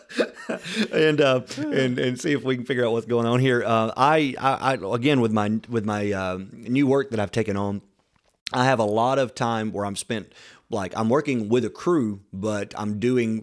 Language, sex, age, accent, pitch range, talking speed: English, male, 30-49, American, 100-120 Hz, 215 wpm